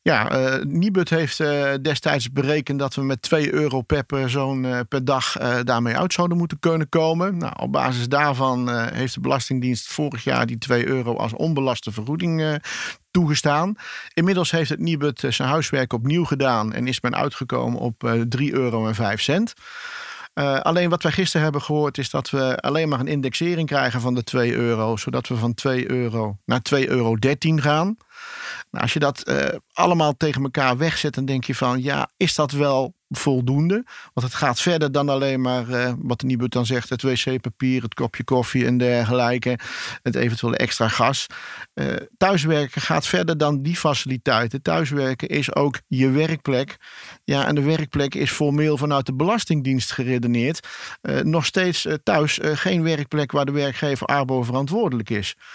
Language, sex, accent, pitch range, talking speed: Dutch, male, Dutch, 125-155 Hz, 175 wpm